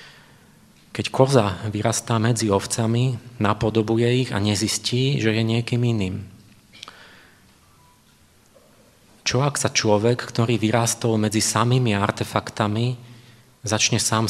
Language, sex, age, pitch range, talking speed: Czech, male, 30-49, 110-125 Hz, 100 wpm